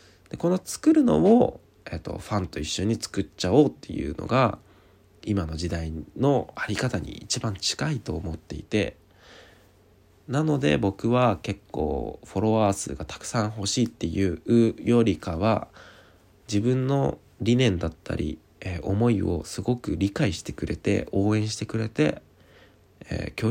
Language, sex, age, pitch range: Japanese, male, 20-39, 90-110 Hz